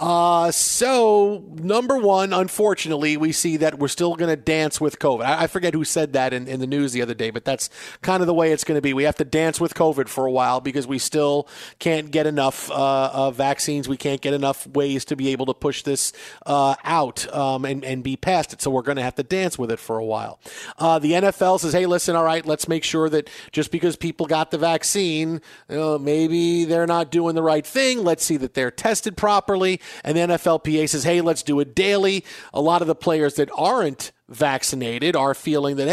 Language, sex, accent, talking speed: English, male, American, 230 wpm